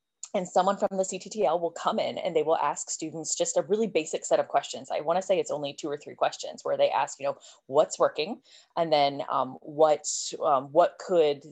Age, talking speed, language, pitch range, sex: 20-39, 220 wpm, English, 150-200 Hz, female